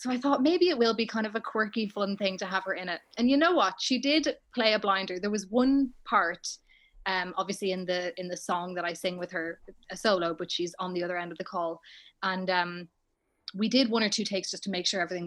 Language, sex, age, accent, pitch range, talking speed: English, female, 20-39, Irish, 185-245 Hz, 265 wpm